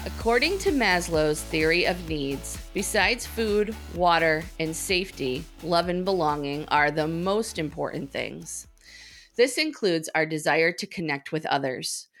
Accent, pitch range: American, 165-245 Hz